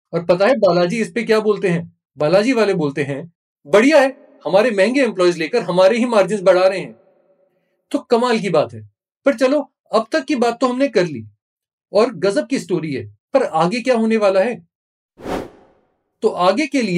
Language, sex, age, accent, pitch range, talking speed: Hindi, male, 30-49, native, 165-235 Hz, 125 wpm